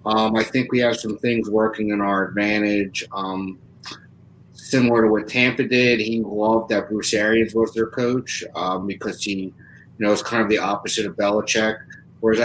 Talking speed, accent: 185 wpm, American